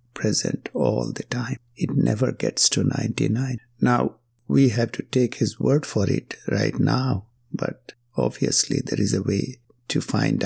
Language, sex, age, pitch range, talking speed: English, male, 60-79, 115-135 Hz, 160 wpm